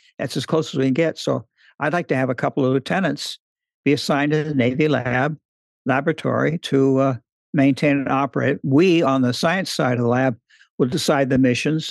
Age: 60-79